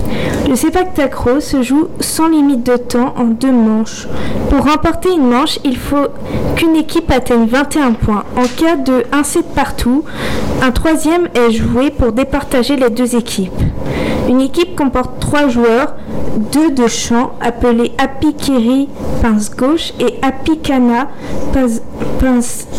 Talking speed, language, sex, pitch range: 135 wpm, French, female, 240-285 Hz